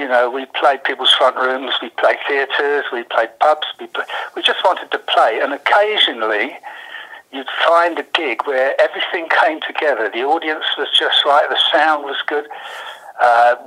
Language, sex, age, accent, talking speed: English, male, 60-79, British, 175 wpm